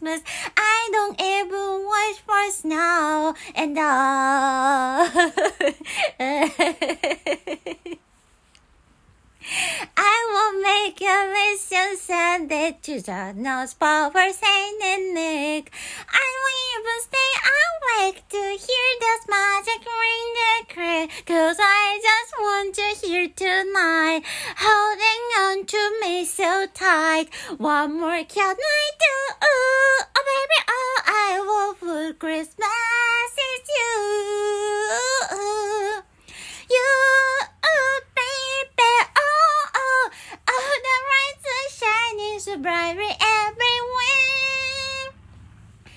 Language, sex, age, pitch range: Japanese, female, 30-49, 310-430 Hz